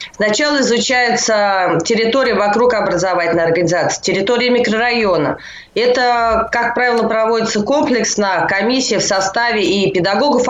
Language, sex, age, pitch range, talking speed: Russian, female, 20-39, 195-245 Hz, 105 wpm